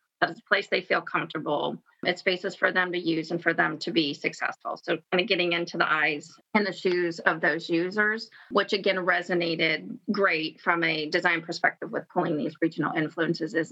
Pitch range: 175-215 Hz